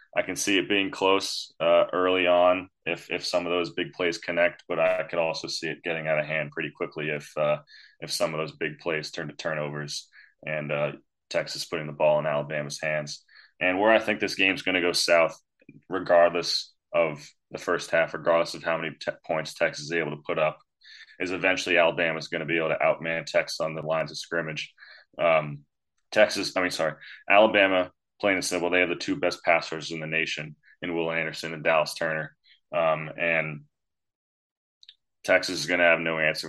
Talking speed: 210 wpm